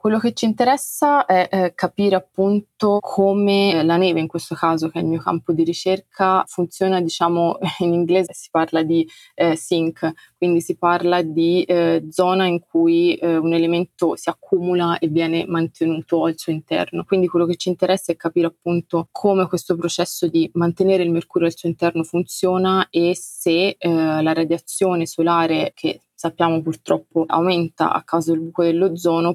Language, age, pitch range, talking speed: Italian, 20-39, 160-180 Hz, 170 wpm